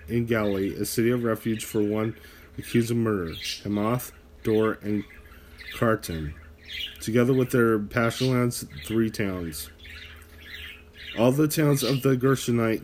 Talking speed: 130 wpm